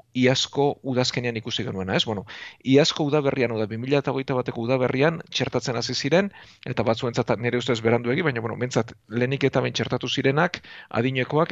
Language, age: Spanish, 40-59